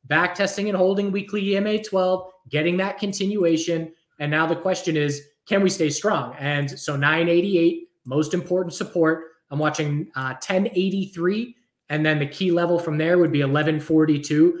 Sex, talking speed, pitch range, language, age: male, 160 wpm, 150-190 Hz, English, 20-39